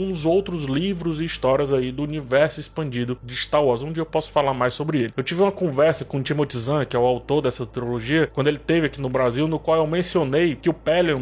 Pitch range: 140-180 Hz